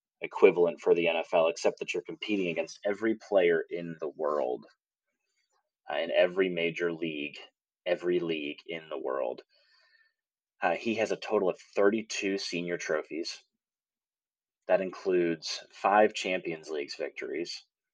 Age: 30-49